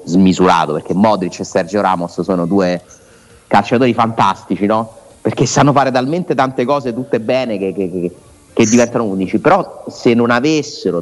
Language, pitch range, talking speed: Italian, 95-135 Hz, 150 wpm